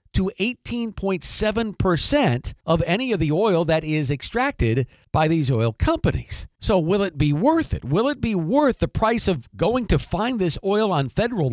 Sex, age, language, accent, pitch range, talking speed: male, 50-69, English, American, 135-190 Hz, 175 wpm